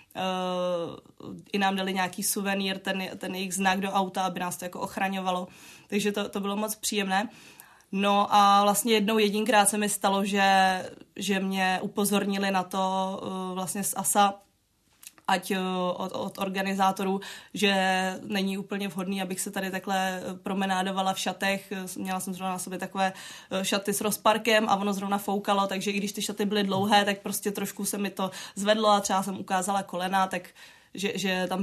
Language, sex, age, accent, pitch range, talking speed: Czech, female, 20-39, native, 185-200 Hz, 170 wpm